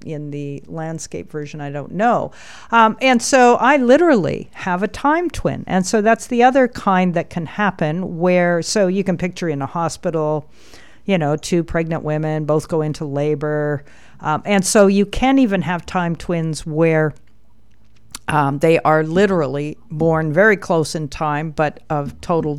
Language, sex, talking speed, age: English, female, 170 wpm, 50-69